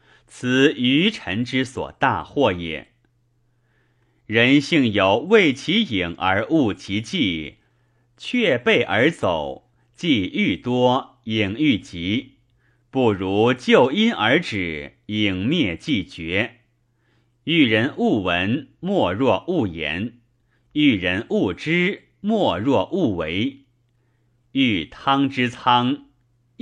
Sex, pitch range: male, 115-145 Hz